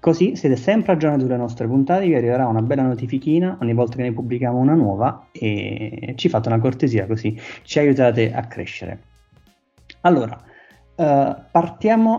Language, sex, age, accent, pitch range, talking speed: Italian, male, 30-49, native, 115-145 Hz, 160 wpm